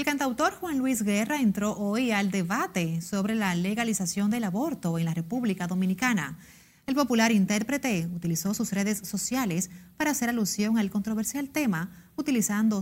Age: 30-49